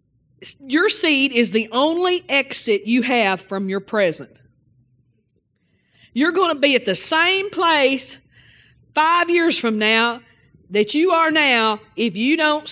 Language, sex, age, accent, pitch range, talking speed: English, female, 40-59, American, 205-290 Hz, 140 wpm